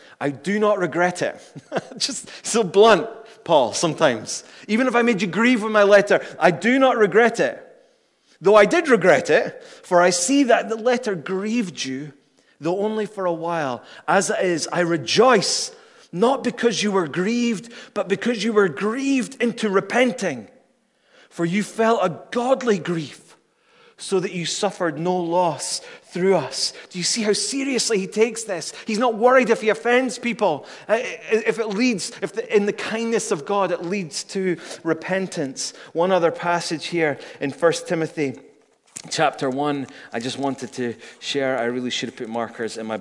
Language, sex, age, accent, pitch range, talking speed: English, male, 30-49, British, 170-230 Hz, 170 wpm